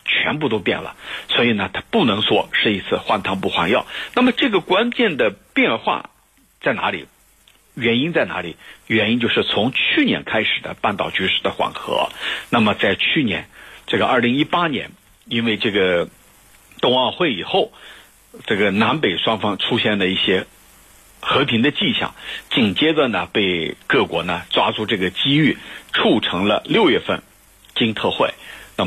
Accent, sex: native, male